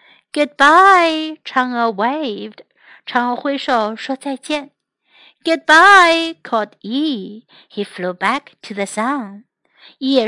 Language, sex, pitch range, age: Chinese, female, 225-285 Hz, 60-79